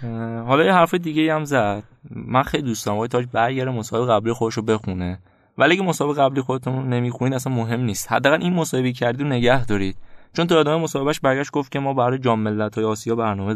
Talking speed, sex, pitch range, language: 215 wpm, male, 110-140 Hz, Persian